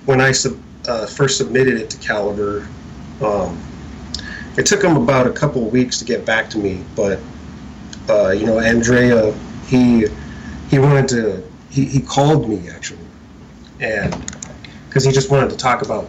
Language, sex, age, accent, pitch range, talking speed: English, male, 30-49, American, 110-135 Hz, 165 wpm